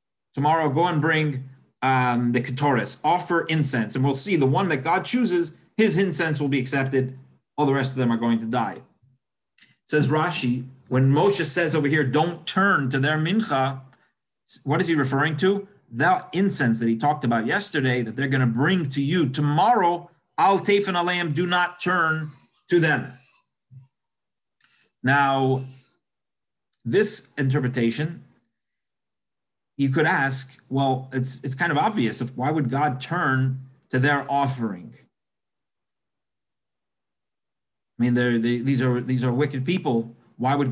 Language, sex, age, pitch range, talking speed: English, male, 30-49, 125-155 Hz, 150 wpm